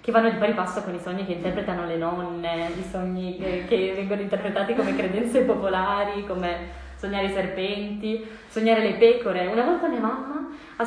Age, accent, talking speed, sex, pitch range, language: 20-39, native, 175 wpm, female, 185-255 Hz, Italian